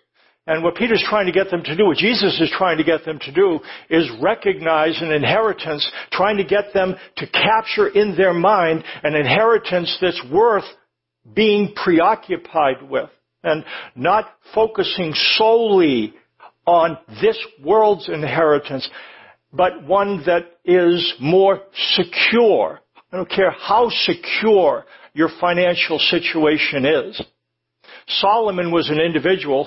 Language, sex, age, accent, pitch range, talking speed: English, male, 60-79, American, 155-200 Hz, 130 wpm